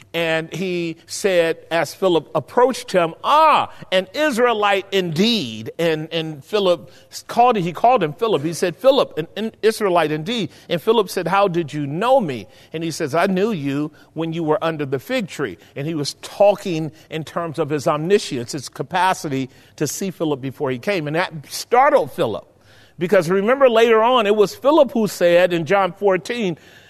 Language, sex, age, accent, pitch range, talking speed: English, male, 50-69, American, 155-205 Hz, 180 wpm